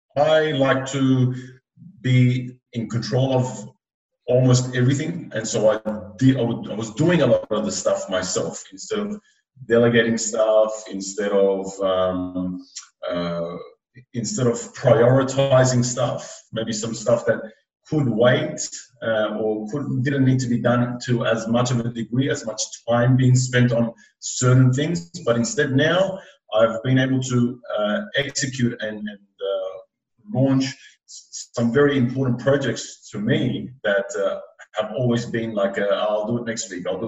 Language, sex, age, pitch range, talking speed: English, male, 30-49, 110-135 Hz, 150 wpm